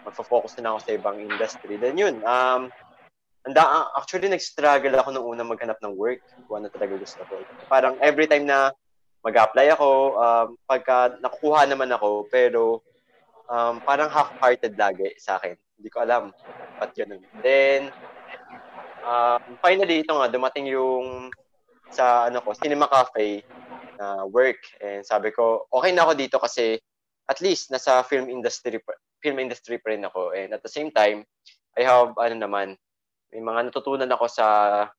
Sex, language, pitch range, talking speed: male, English, 115-150 Hz, 165 wpm